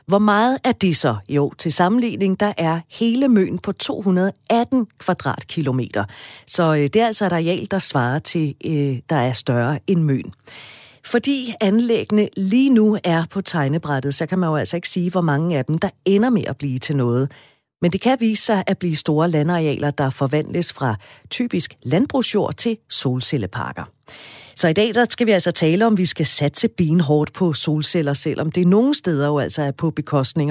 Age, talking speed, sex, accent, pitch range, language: 40-59, 185 wpm, female, native, 145-200 Hz, Danish